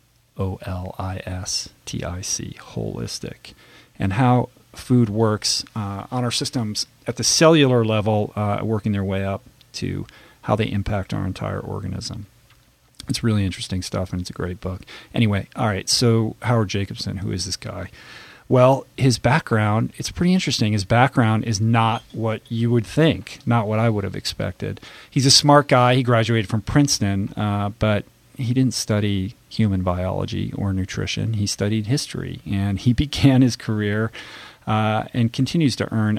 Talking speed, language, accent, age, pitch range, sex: 160 wpm, English, American, 40-59, 100-120 Hz, male